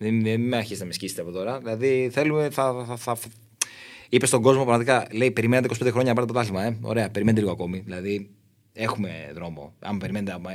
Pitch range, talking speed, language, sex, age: 105-130 Hz, 195 wpm, Greek, male, 30-49